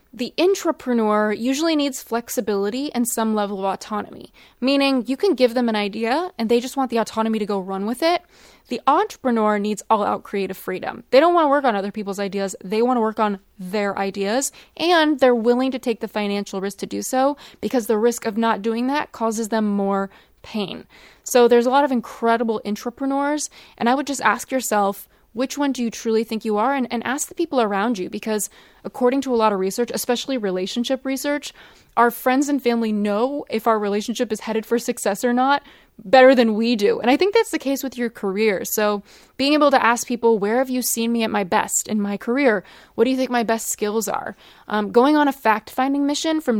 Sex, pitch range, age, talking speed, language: female, 210-260 Hz, 20-39, 220 wpm, English